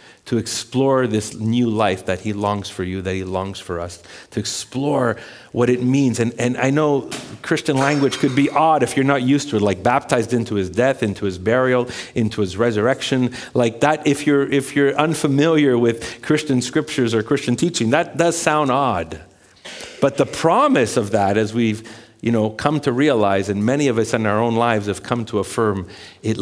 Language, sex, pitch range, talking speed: English, male, 100-125 Hz, 200 wpm